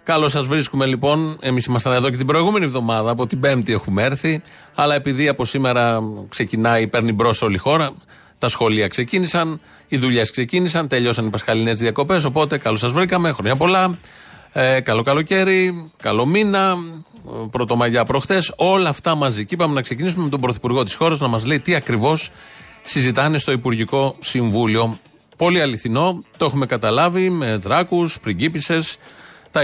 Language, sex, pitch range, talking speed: Greek, male, 120-155 Hz, 165 wpm